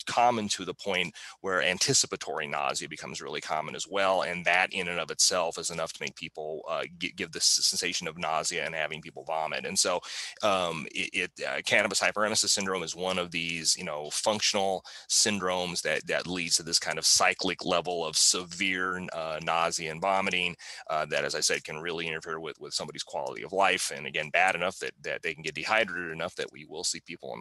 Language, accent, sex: Italian, American, male